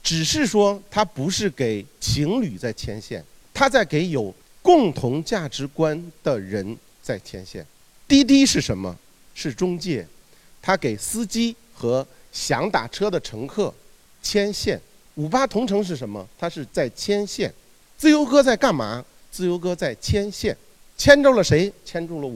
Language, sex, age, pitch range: Chinese, male, 50-69, 125-190 Hz